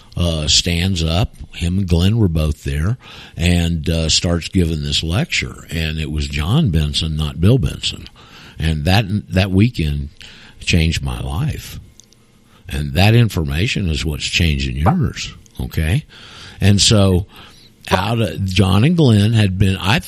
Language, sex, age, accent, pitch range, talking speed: English, male, 50-69, American, 80-115 Hz, 145 wpm